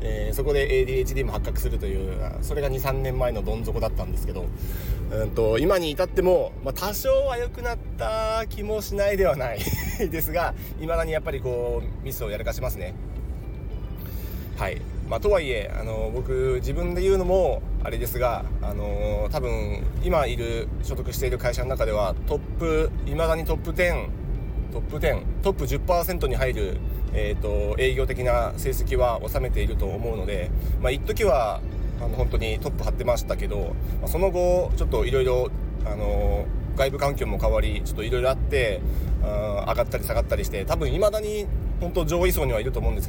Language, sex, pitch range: Japanese, male, 105-155 Hz